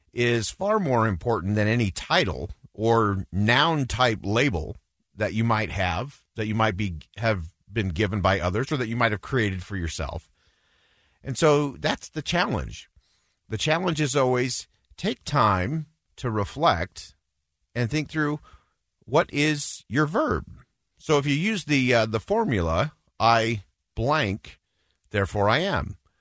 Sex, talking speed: male, 145 wpm